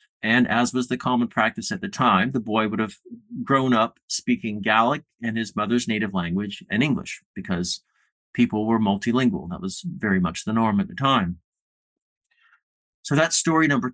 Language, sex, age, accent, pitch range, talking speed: English, male, 40-59, American, 100-160 Hz, 175 wpm